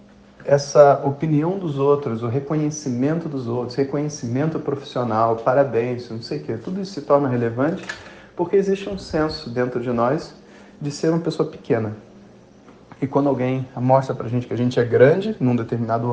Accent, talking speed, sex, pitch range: Brazilian, 165 wpm, male, 120-140 Hz